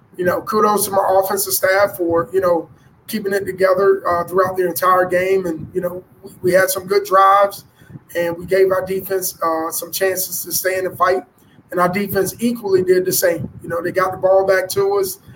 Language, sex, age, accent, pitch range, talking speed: English, male, 20-39, American, 175-200 Hz, 220 wpm